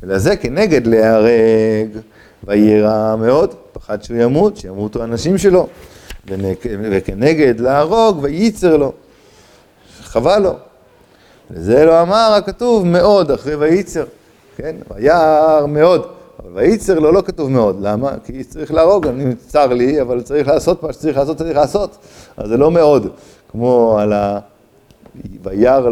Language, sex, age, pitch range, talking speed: Hebrew, male, 50-69, 105-145 Hz, 130 wpm